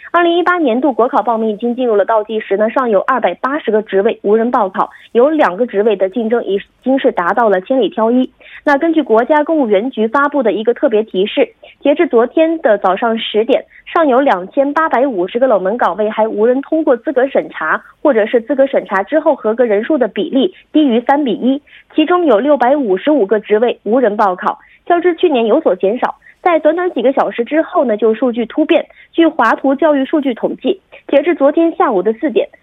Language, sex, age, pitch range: Korean, female, 20-39, 220-310 Hz